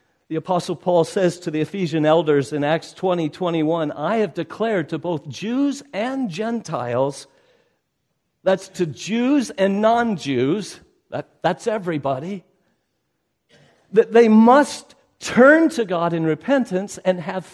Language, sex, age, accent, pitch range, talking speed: English, male, 50-69, American, 150-230 Hz, 125 wpm